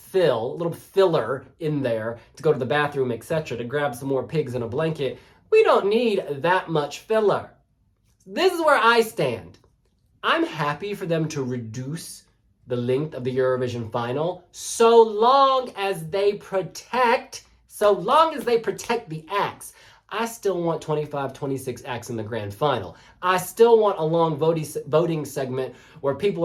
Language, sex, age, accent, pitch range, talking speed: English, male, 20-39, American, 140-200 Hz, 170 wpm